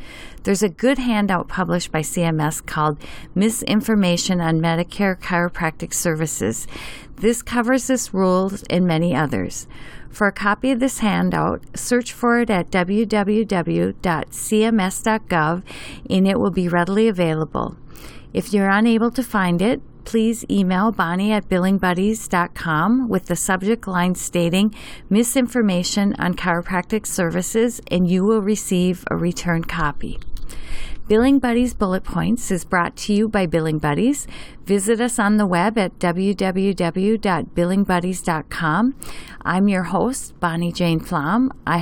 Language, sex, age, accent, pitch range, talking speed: English, female, 40-59, American, 175-220 Hz, 130 wpm